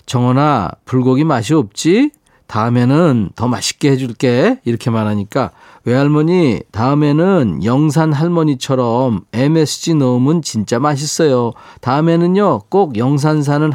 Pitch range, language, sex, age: 110-155 Hz, Korean, male, 40-59